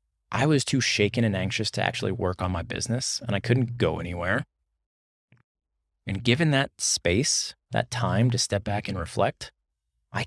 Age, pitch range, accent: 20-39, 85-120 Hz, American